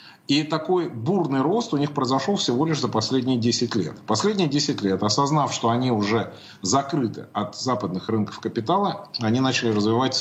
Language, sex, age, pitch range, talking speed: Russian, male, 30-49, 110-150 Hz, 165 wpm